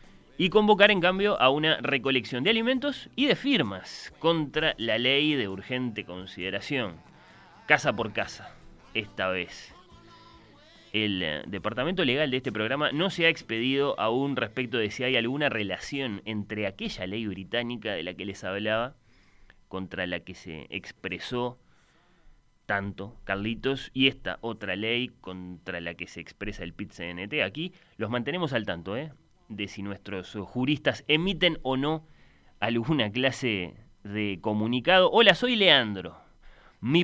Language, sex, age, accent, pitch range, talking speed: Spanish, male, 30-49, Argentinian, 100-160 Hz, 145 wpm